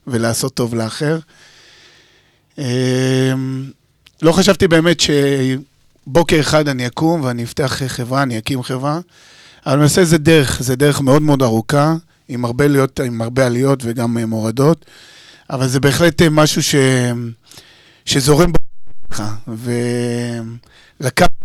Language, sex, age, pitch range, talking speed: Hebrew, male, 30-49, 125-150 Hz, 120 wpm